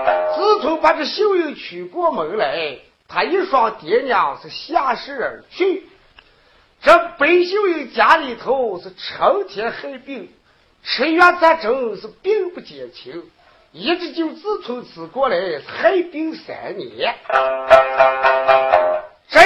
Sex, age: male, 50-69